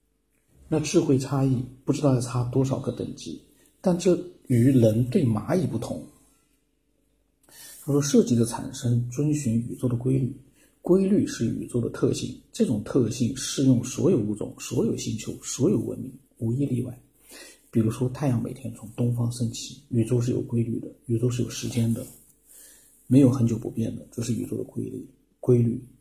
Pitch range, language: 120-135 Hz, Chinese